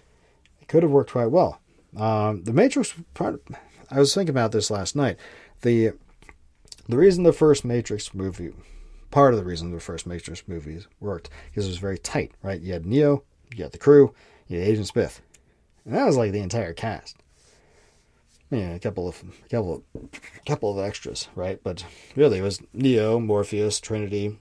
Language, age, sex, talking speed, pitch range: English, 40-59, male, 190 wpm, 85-115 Hz